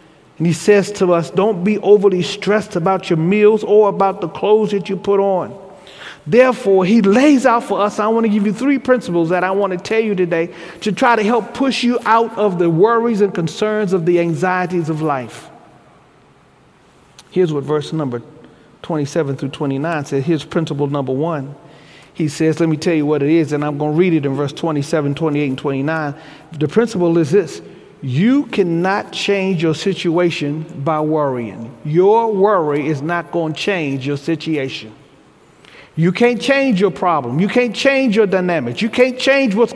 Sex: male